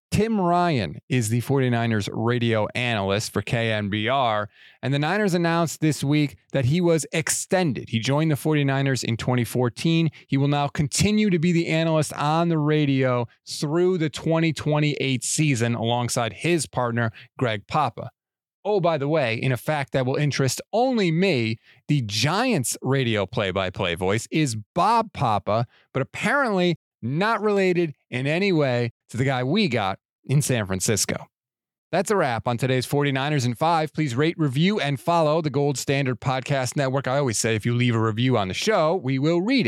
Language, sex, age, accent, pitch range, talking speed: English, male, 30-49, American, 120-160 Hz, 170 wpm